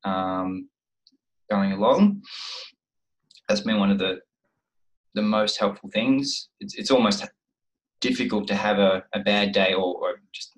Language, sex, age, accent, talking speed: English, male, 20-39, Australian, 140 wpm